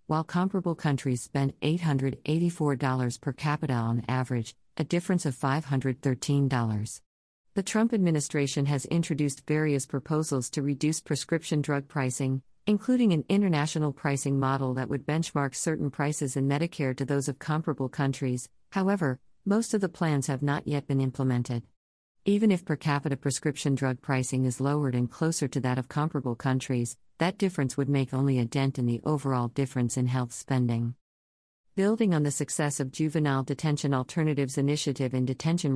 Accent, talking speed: American, 155 wpm